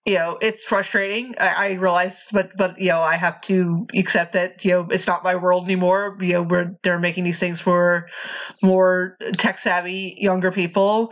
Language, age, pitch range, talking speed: English, 30-49, 175-200 Hz, 195 wpm